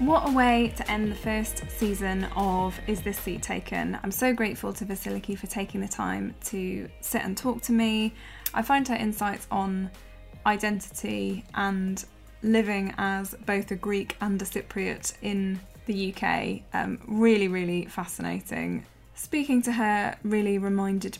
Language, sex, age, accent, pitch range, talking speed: English, female, 10-29, British, 190-220 Hz, 155 wpm